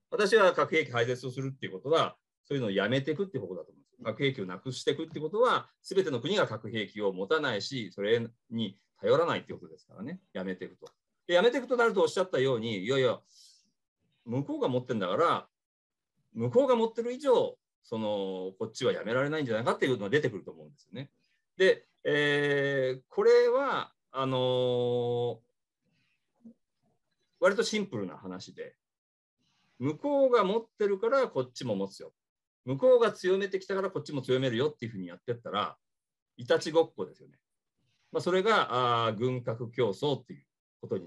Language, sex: Japanese, male